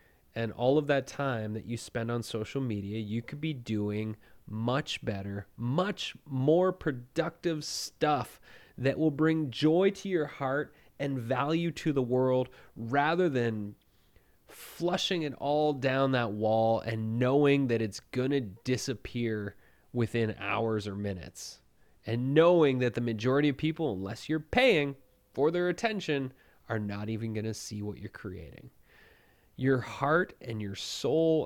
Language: English